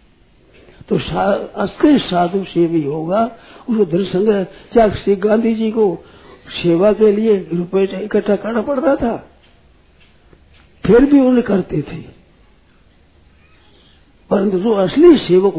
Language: Hindi